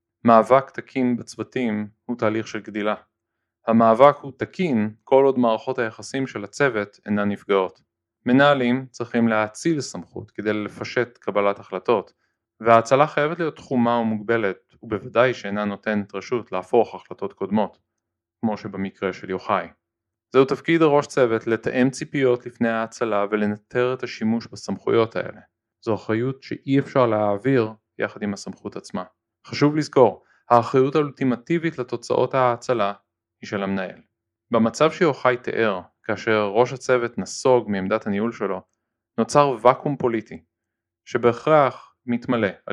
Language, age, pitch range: Hebrew, 20-39, 105-125 Hz